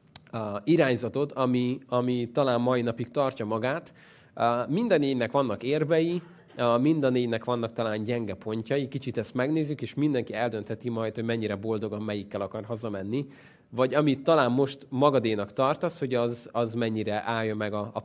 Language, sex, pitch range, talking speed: Hungarian, male, 115-145 Hz, 145 wpm